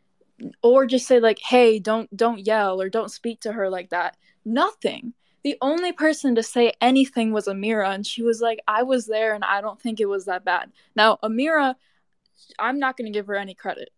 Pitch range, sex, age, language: 210-265 Hz, female, 10-29, English